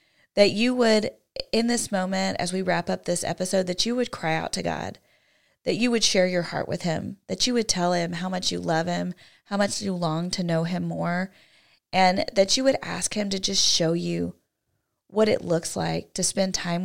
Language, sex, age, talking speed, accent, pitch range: English, female, 30-49, 220 wpm, American, 175-210 Hz